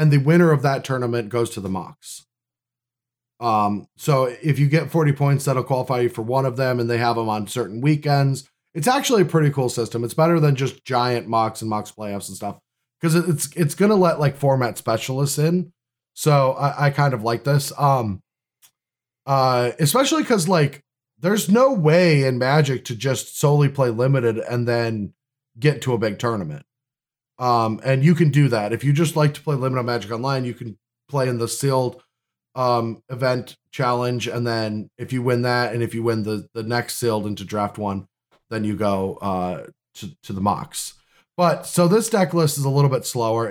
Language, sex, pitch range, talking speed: English, male, 115-145 Hz, 200 wpm